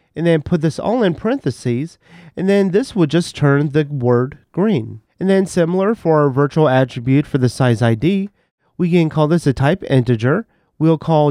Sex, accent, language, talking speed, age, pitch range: male, American, English, 190 wpm, 30-49, 130-185 Hz